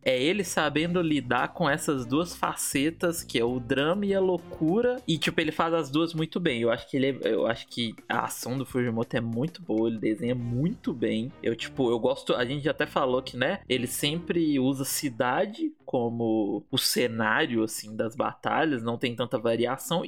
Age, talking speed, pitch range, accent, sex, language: 20-39, 195 wpm, 125-185 Hz, Brazilian, male, Portuguese